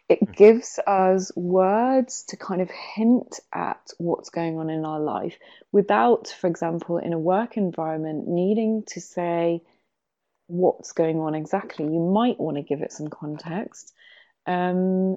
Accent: British